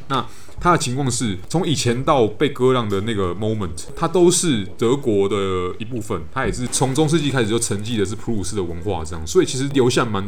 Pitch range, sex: 95-130 Hz, male